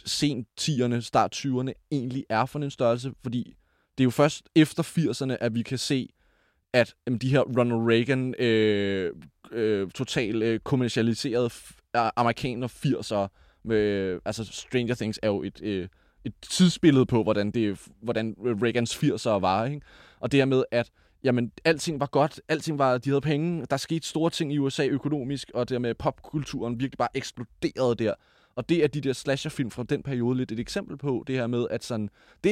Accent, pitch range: native, 115-145 Hz